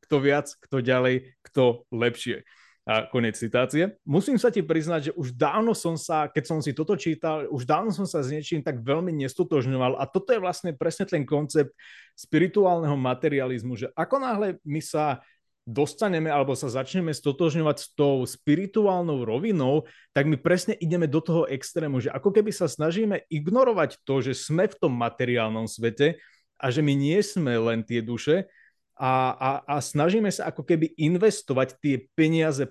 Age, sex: 30-49, male